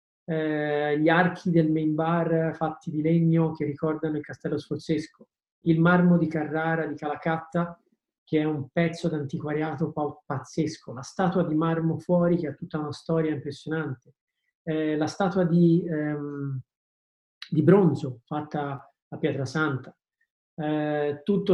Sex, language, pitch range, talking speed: male, Italian, 150-170 Hz, 135 wpm